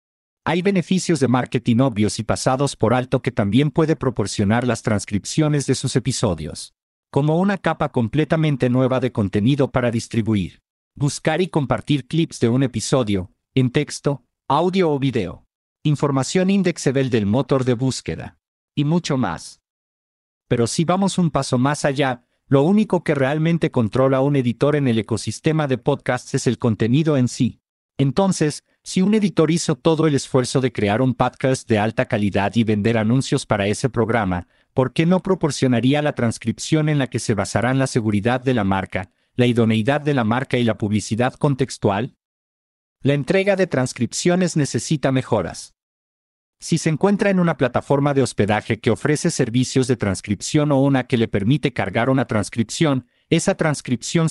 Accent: Mexican